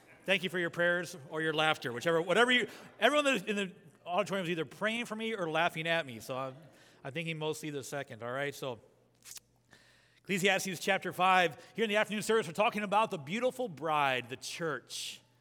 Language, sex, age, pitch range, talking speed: English, male, 30-49, 160-205 Hz, 200 wpm